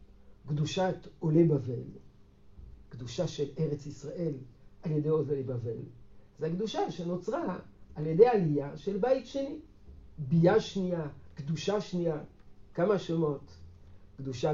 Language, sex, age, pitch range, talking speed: Hebrew, male, 60-79, 110-170 Hz, 110 wpm